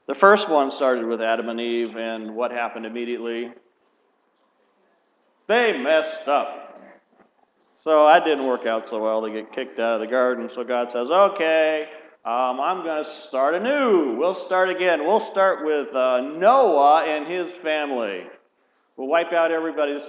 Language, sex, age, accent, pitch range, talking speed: English, male, 50-69, American, 125-175 Hz, 165 wpm